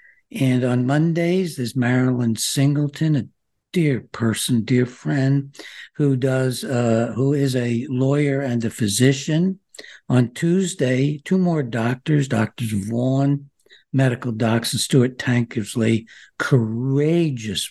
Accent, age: American, 60-79